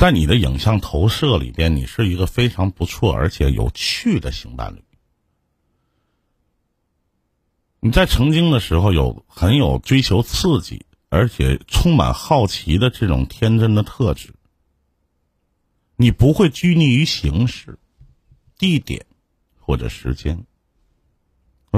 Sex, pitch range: male, 70-110 Hz